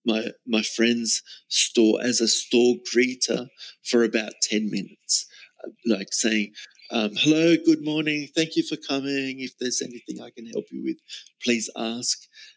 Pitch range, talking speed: 120-165 Hz, 155 wpm